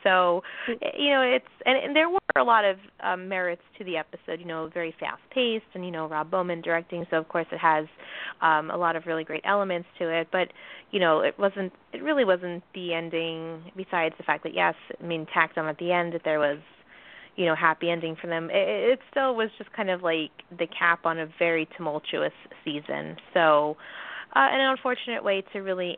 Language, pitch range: English, 160-200 Hz